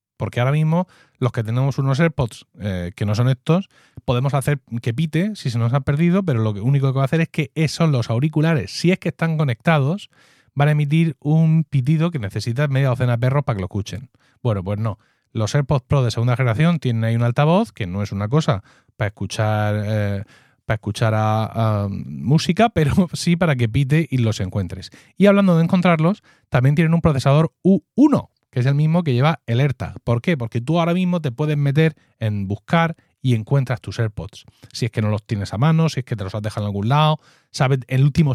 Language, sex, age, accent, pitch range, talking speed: Spanish, male, 30-49, Spanish, 115-160 Hz, 220 wpm